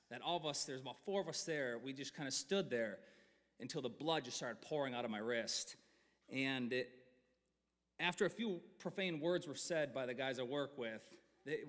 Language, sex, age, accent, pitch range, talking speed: English, male, 30-49, American, 130-170 Hz, 215 wpm